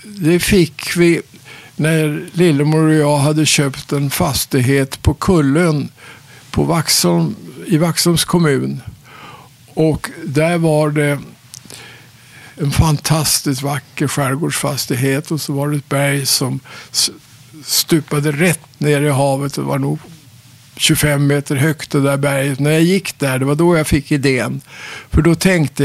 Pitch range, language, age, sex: 135-160 Hz, English, 60-79, male